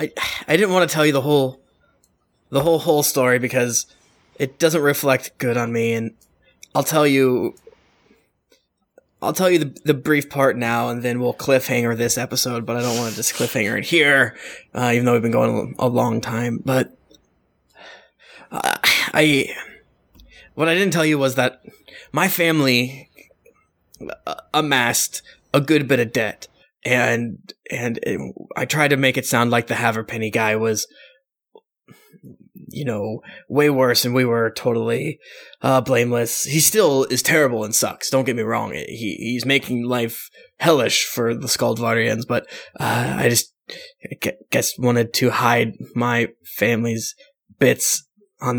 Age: 20-39